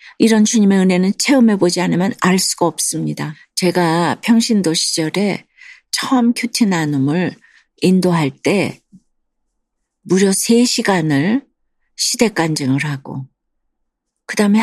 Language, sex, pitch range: Korean, female, 170-220 Hz